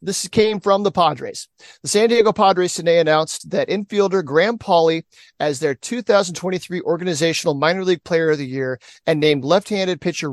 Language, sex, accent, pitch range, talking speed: English, male, American, 155-195 Hz, 170 wpm